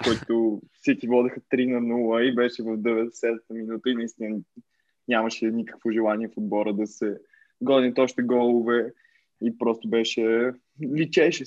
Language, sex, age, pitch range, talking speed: Bulgarian, male, 20-39, 115-125 Hz, 145 wpm